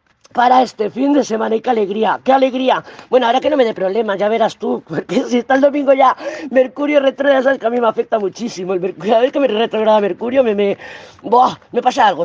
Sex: female